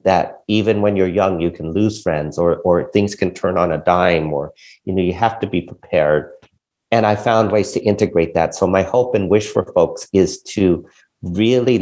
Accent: American